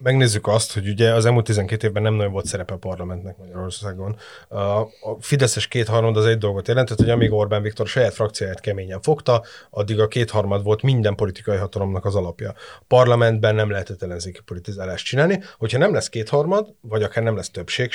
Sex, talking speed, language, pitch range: male, 180 wpm, Hungarian, 105-115 Hz